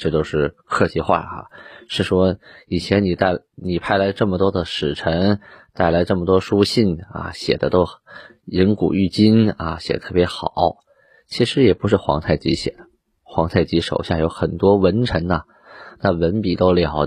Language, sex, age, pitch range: Chinese, male, 20-39, 85-100 Hz